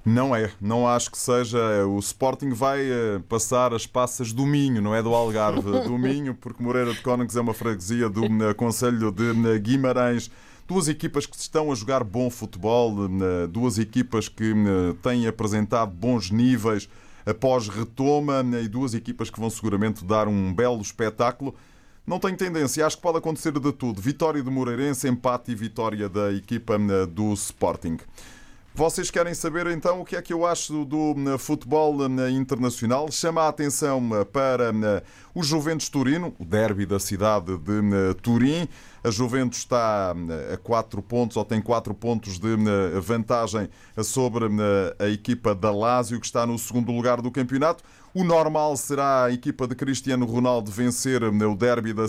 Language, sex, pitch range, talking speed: Portuguese, male, 110-135 Hz, 160 wpm